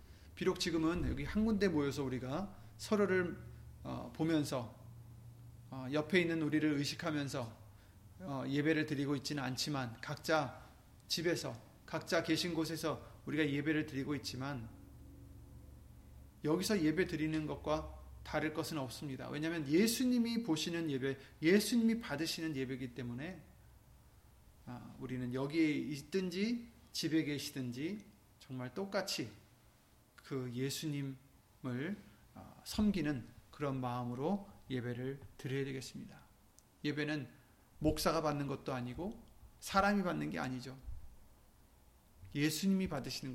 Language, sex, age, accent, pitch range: Korean, male, 30-49, native, 120-155 Hz